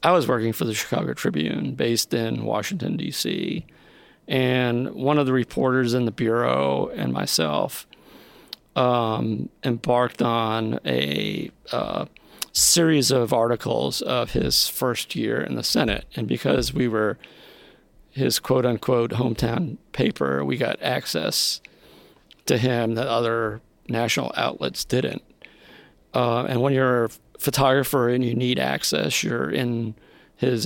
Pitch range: 115-130 Hz